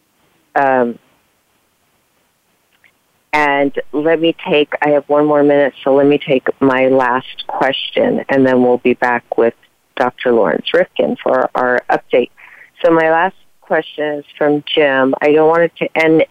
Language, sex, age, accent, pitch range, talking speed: English, female, 40-59, American, 135-160 Hz, 150 wpm